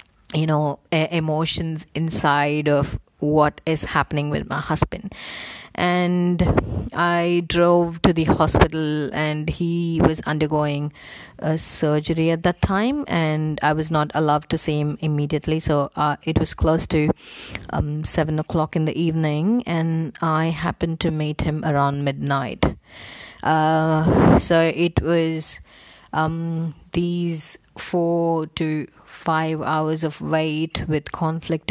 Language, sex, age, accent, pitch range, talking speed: Tamil, female, 30-49, native, 150-165 Hz, 130 wpm